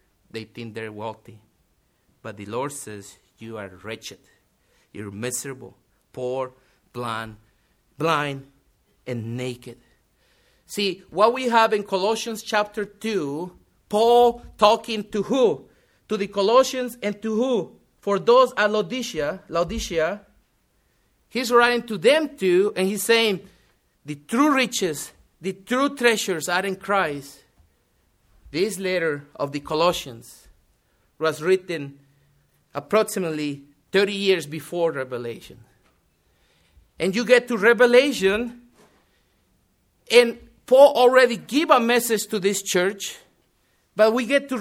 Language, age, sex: English, 50-69, male